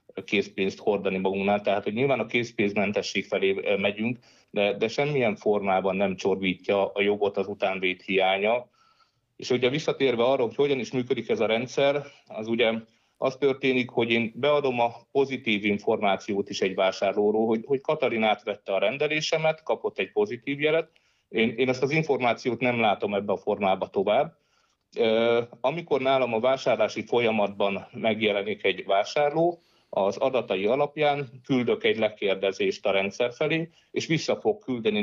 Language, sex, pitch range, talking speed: Hungarian, male, 100-145 Hz, 150 wpm